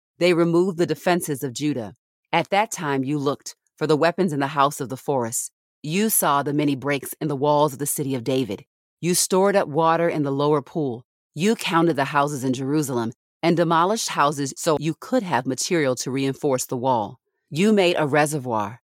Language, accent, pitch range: English, American, 135-165 Hz